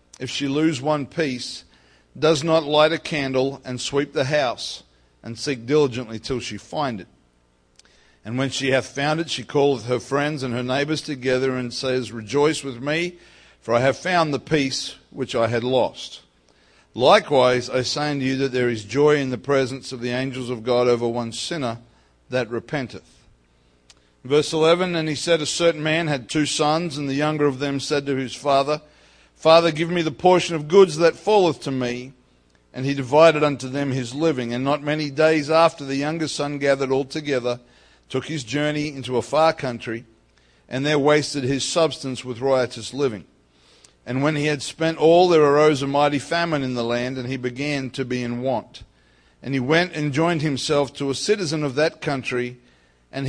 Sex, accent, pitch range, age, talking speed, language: male, Australian, 120-150 Hz, 50-69, 190 wpm, English